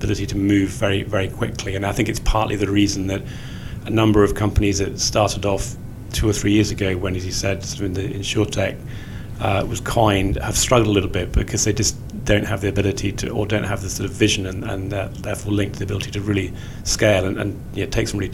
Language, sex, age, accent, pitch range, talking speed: English, male, 40-59, British, 100-115 Hz, 250 wpm